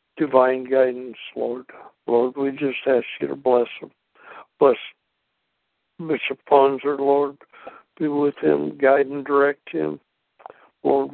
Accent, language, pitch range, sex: American, English, 130-145 Hz, male